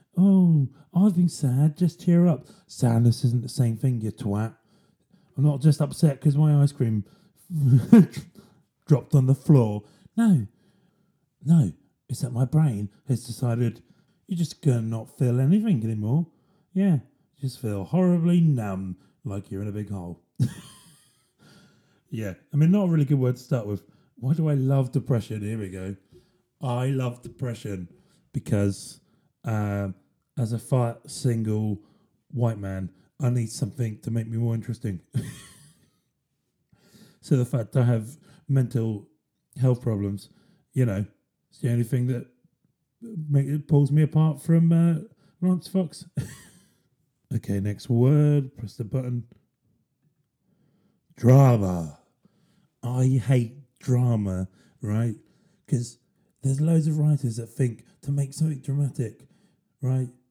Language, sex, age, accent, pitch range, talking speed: English, male, 30-49, British, 115-155 Hz, 135 wpm